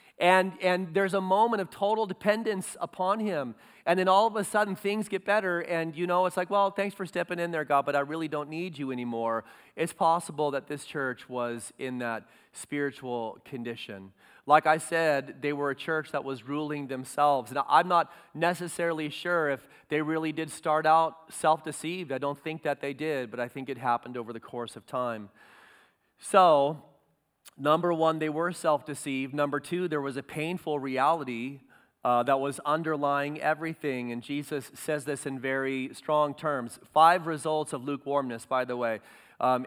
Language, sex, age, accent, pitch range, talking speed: English, male, 30-49, American, 135-165 Hz, 185 wpm